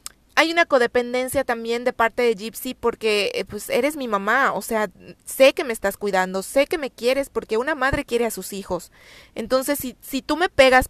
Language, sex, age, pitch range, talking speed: Spanish, female, 30-49, 200-245 Hz, 205 wpm